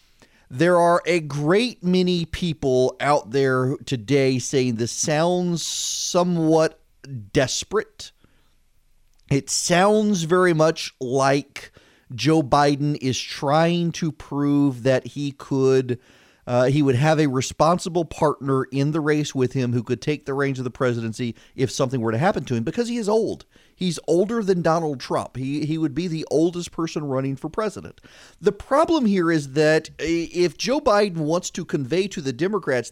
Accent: American